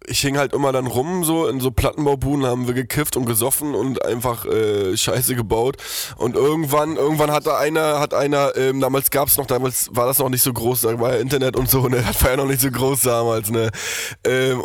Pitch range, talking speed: 115-130 Hz, 225 wpm